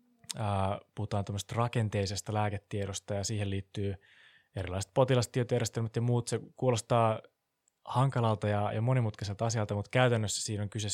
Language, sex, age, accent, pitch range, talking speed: Finnish, male, 20-39, native, 100-115 Hz, 115 wpm